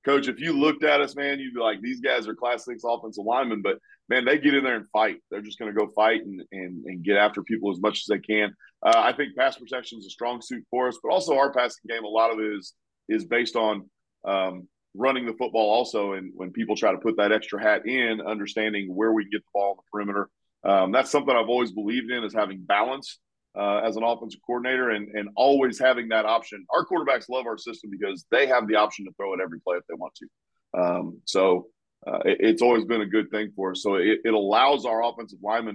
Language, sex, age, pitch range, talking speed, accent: English, male, 30-49, 100-120 Hz, 250 wpm, American